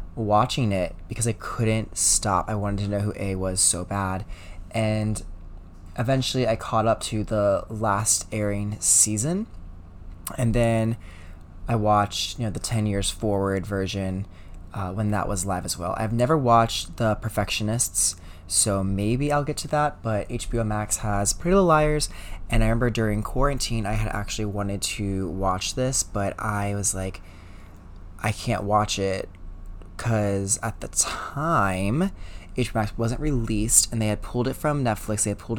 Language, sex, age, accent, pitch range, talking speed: English, male, 20-39, American, 90-115 Hz, 165 wpm